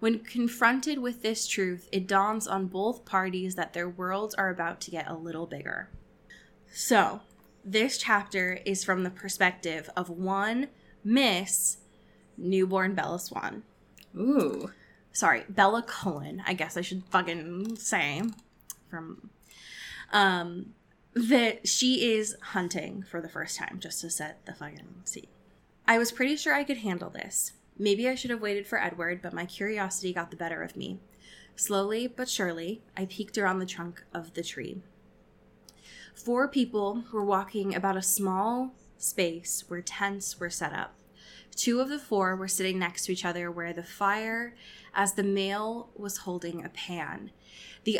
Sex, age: female, 20-39